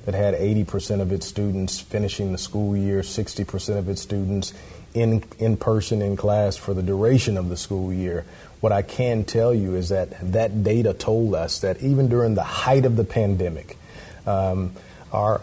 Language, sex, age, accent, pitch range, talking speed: English, male, 40-59, American, 95-115 Hz, 190 wpm